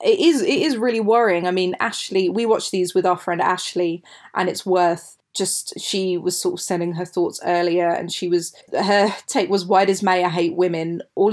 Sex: female